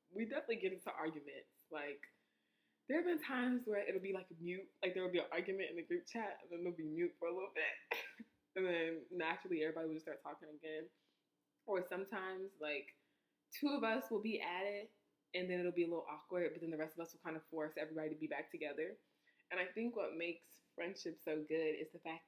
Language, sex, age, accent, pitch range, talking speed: English, female, 20-39, American, 155-185 Hz, 235 wpm